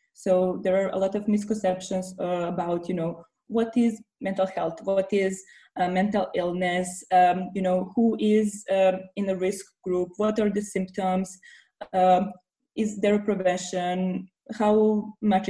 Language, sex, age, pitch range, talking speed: English, female, 20-39, 185-215 Hz, 160 wpm